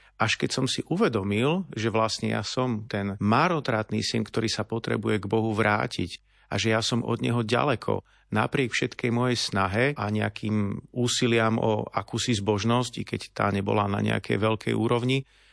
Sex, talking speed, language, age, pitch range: male, 165 wpm, Slovak, 40-59, 105-120 Hz